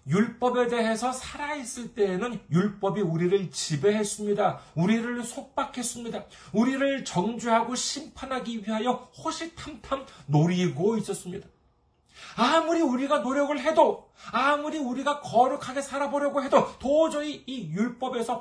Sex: male